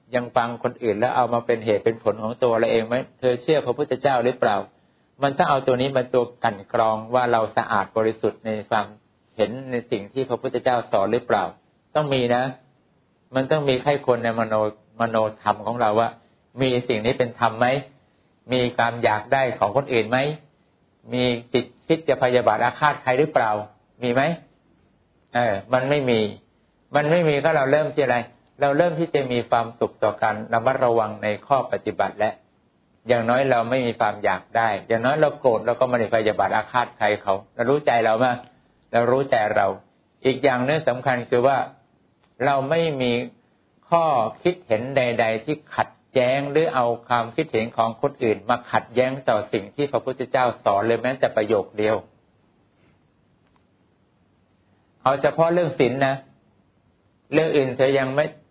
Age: 60-79